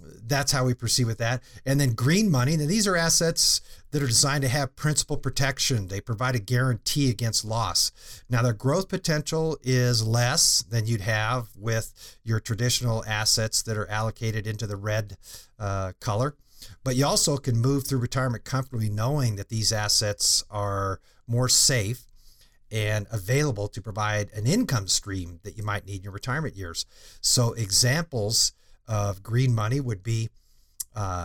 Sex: male